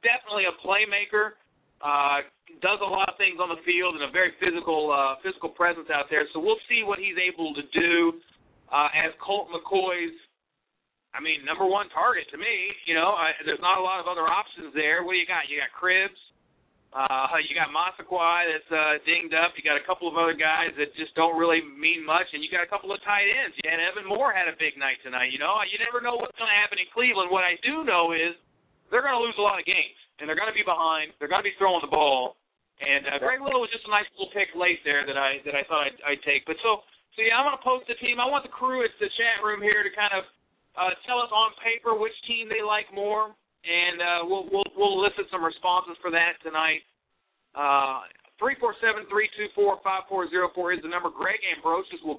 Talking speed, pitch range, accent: 240 wpm, 160-205 Hz, American